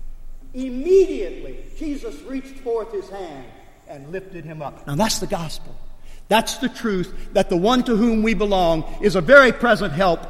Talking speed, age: 170 wpm, 50-69